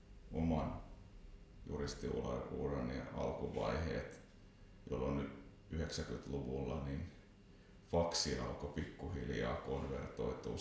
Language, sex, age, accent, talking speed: Finnish, male, 30-49, native, 55 wpm